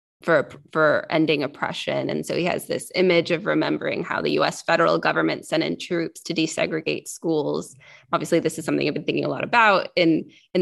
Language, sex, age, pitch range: English, female, 20-39, 170-215 Hz